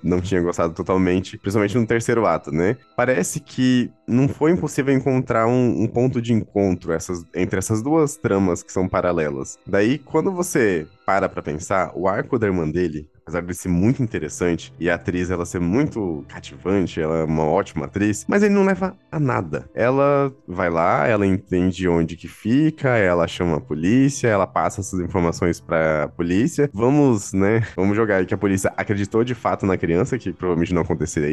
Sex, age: male, 20-39